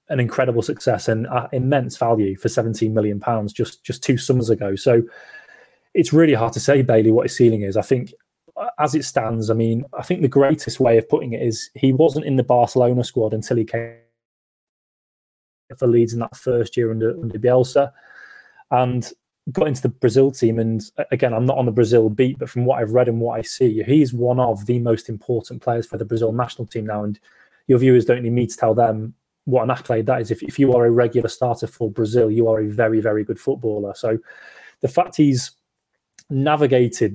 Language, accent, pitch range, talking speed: English, British, 115-130 Hz, 210 wpm